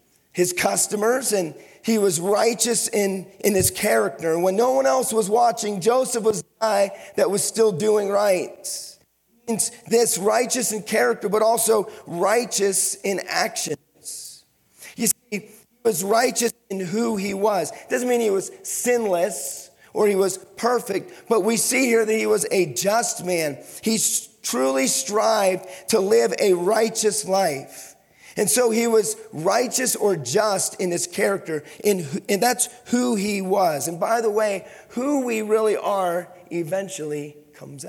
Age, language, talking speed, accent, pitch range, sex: 40-59, English, 155 wpm, American, 185-225 Hz, male